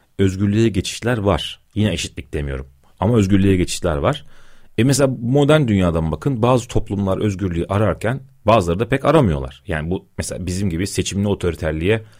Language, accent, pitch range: Turkish, native, 90-120 Hz